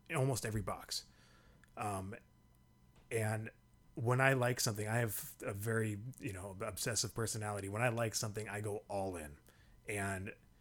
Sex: male